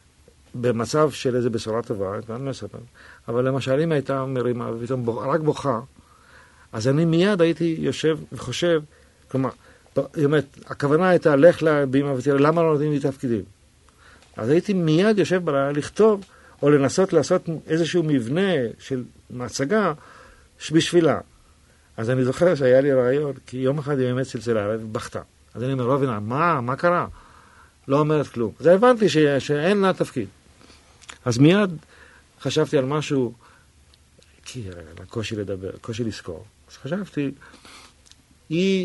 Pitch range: 115-150 Hz